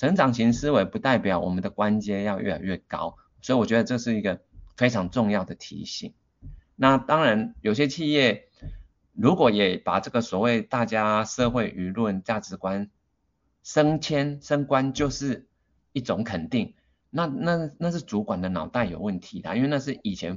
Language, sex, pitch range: Chinese, male, 100-130 Hz